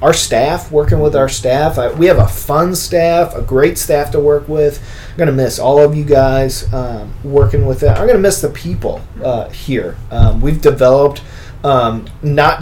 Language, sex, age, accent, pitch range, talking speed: English, male, 30-49, American, 115-150 Hz, 200 wpm